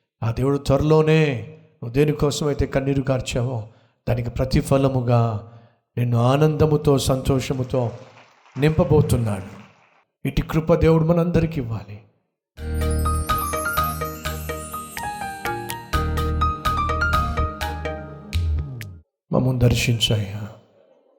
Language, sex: Telugu, male